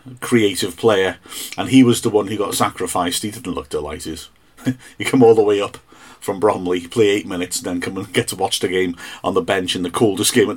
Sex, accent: male, British